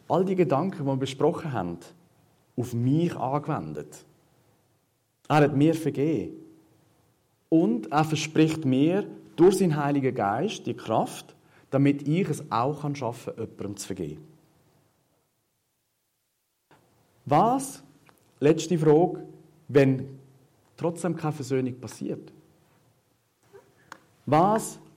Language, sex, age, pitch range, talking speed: German, male, 40-59, 130-165 Hz, 100 wpm